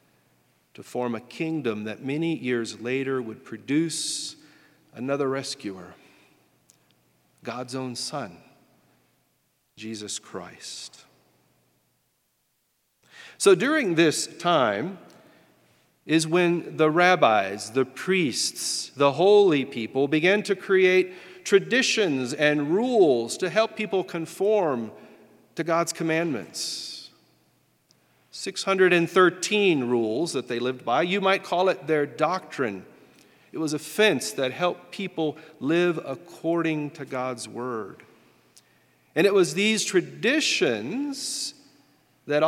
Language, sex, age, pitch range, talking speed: English, male, 40-59, 135-210 Hz, 105 wpm